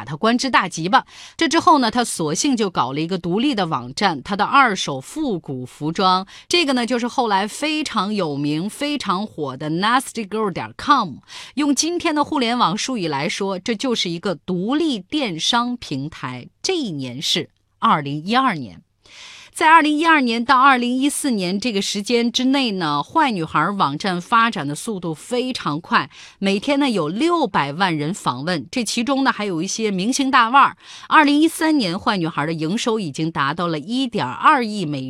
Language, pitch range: Chinese, 170-255 Hz